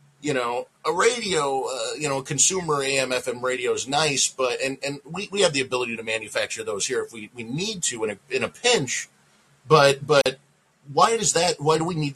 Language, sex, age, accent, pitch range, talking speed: English, male, 30-49, American, 140-175 Hz, 210 wpm